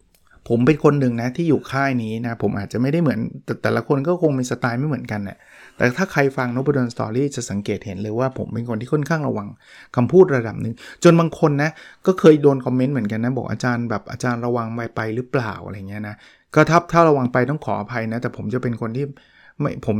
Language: Thai